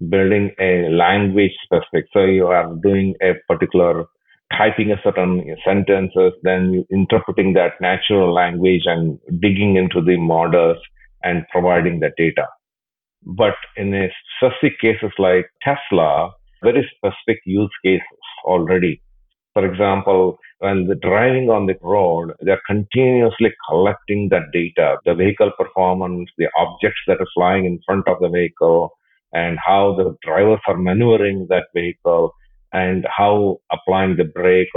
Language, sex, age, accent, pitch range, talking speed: English, male, 40-59, Indian, 90-110 Hz, 135 wpm